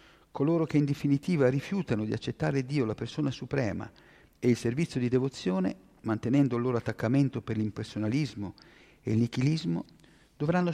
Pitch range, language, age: 120-150 Hz, Italian, 50-69